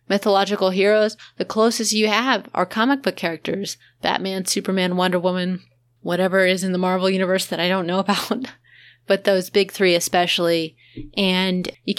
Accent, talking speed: American, 160 wpm